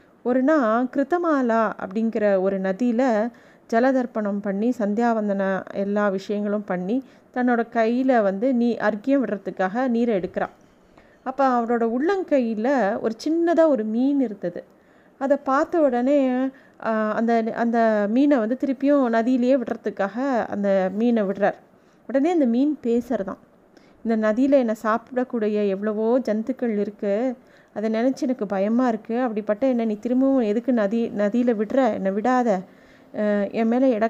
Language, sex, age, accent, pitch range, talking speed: Tamil, female, 30-49, native, 220-270 Hz, 120 wpm